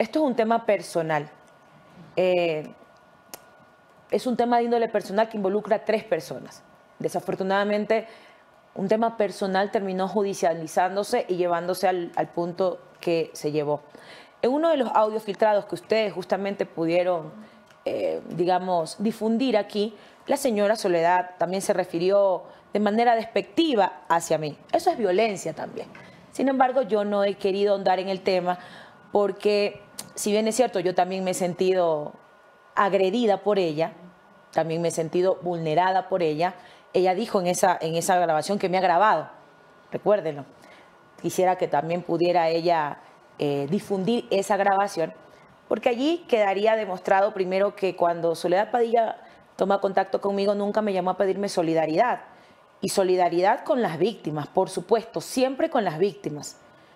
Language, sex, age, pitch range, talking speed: English, female, 30-49, 175-215 Hz, 145 wpm